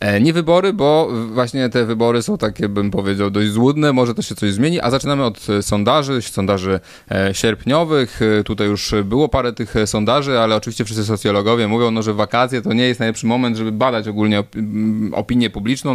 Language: Polish